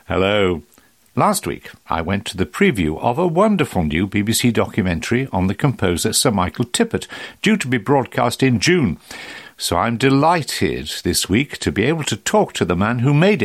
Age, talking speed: 60-79, 185 wpm